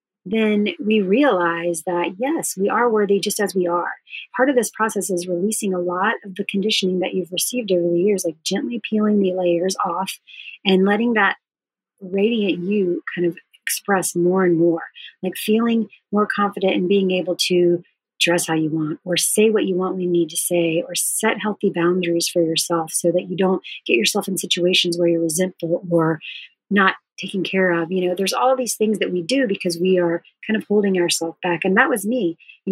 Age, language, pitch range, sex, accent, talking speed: 30-49, English, 175-215 Hz, female, American, 205 wpm